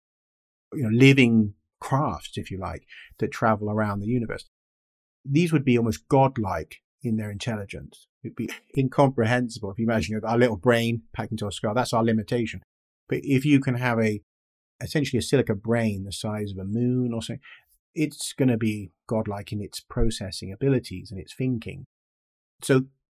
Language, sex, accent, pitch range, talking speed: English, male, British, 100-125 Hz, 170 wpm